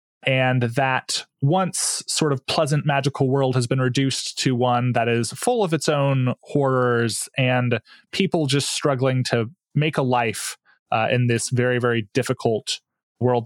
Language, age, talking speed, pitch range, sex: English, 20-39, 155 wpm, 120-145 Hz, male